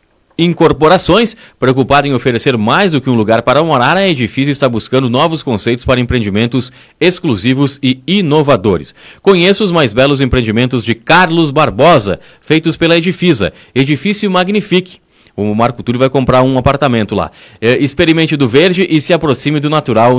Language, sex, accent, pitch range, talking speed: Portuguese, male, Brazilian, 125-170 Hz, 150 wpm